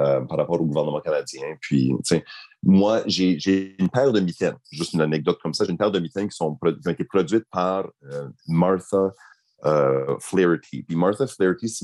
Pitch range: 80-110 Hz